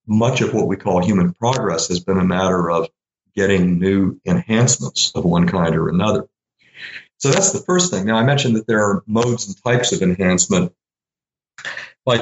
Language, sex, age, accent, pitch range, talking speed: English, male, 50-69, American, 90-115 Hz, 180 wpm